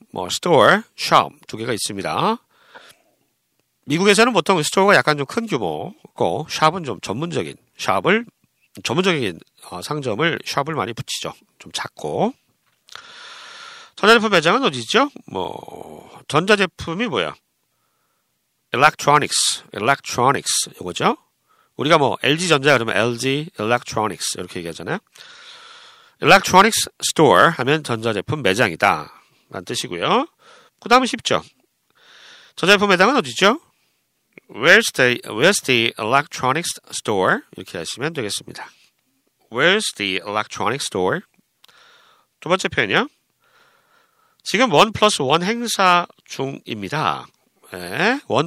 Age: 40-59